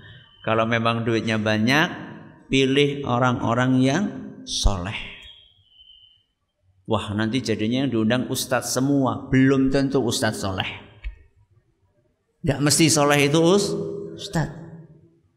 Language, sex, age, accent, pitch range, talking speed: Indonesian, male, 50-69, native, 120-200 Hz, 95 wpm